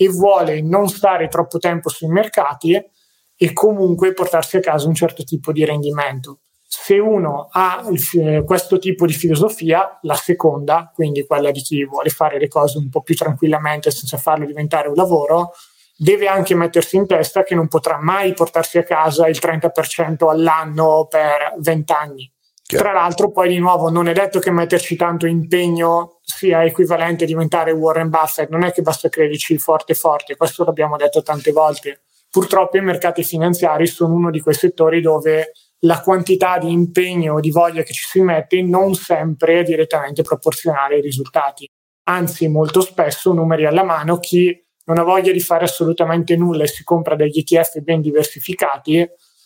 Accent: native